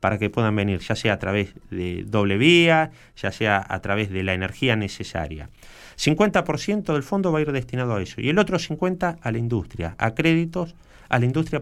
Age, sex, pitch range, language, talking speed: 30-49, male, 105-150 Hz, Spanish, 205 wpm